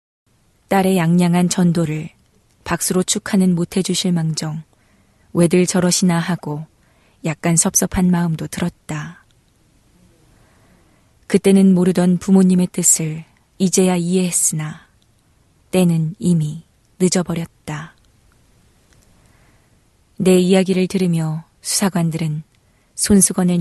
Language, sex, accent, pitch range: Korean, female, native, 155-185 Hz